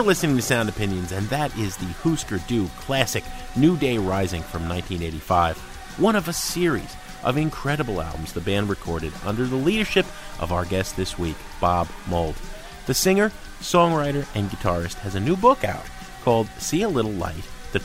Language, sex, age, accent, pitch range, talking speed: English, male, 30-49, American, 90-150 Hz, 175 wpm